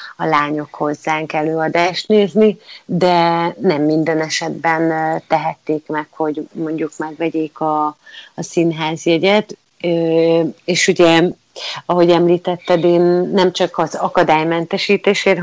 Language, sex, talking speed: Hungarian, female, 100 wpm